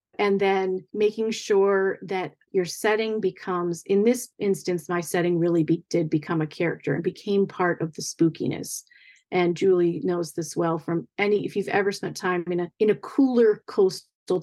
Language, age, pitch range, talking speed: English, 30-49, 180-225 Hz, 180 wpm